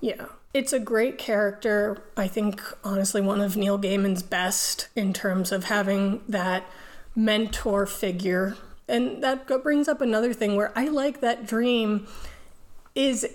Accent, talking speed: American, 145 wpm